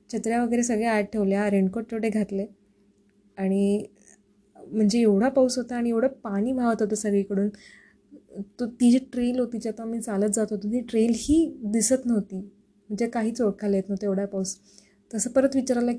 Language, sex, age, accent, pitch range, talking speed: Marathi, female, 20-39, native, 200-225 Hz, 165 wpm